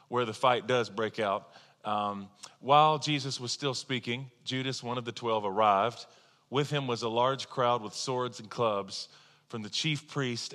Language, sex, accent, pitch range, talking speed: English, male, American, 115-145 Hz, 180 wpm